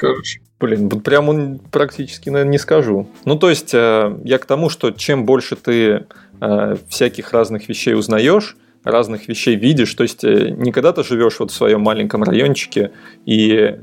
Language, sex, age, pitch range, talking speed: Russian, male, 30-49, 105-135 Hz, 150 wpm